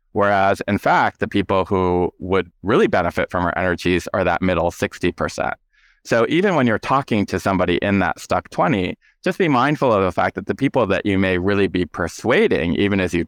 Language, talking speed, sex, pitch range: English, 205 wpm, male, 90-115 Hz